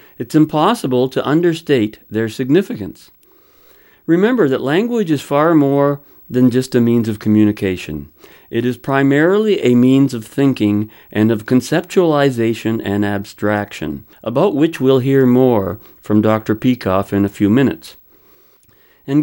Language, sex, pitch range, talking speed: English, male, 105-150 Hz, 135 wpm